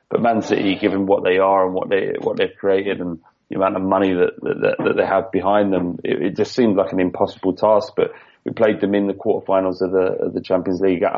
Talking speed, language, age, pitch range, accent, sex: 250 wpm, English, 30-49, 95-105 Hz, British, male